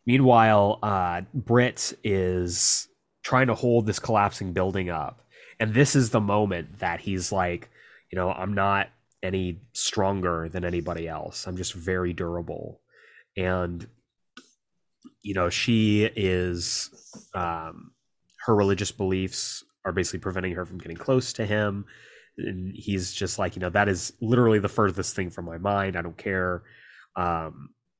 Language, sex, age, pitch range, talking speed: English, male, 20-39, 90-110 Hz, 150 wpm